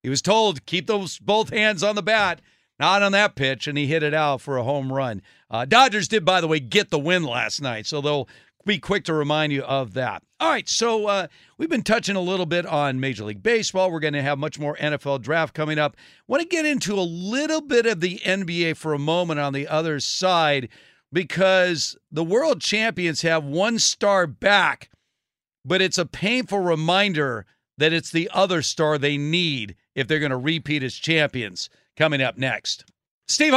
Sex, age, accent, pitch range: male, 50-69, American, 145-205 Hz